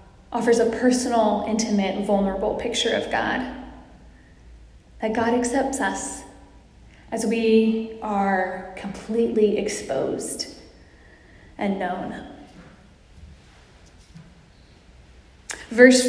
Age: 10-29